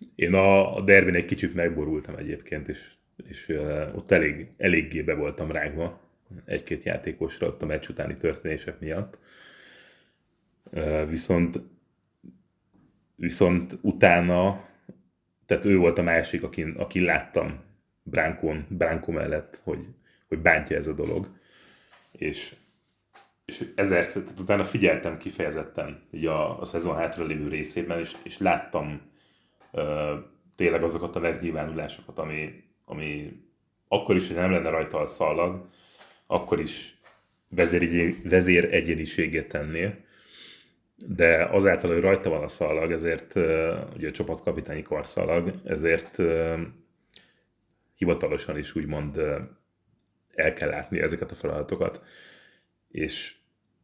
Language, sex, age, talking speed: Hungarian, male, 30-49, 110 wpm